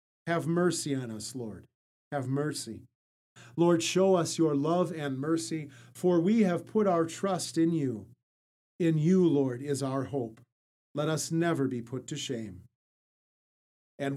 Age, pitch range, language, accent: 50-69, 130-165 Hz, English, American